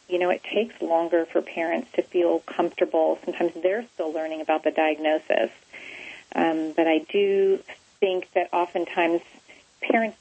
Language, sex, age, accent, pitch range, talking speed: English, female, 40-59, American, 165-200 Hz, 145 wpm